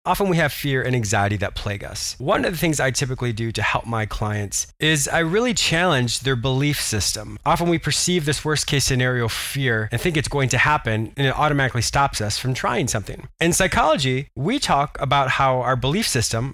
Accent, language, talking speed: American, English, 210 wpm